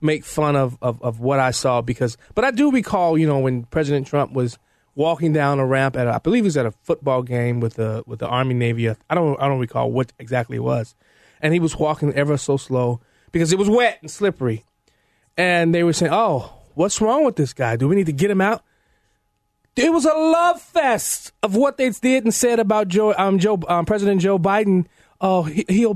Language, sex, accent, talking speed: English, male, American, 230 wpm